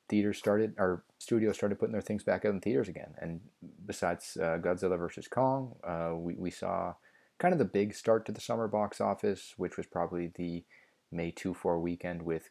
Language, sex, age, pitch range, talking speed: English, male, 20-39, 85-105 Hz, 195 wpm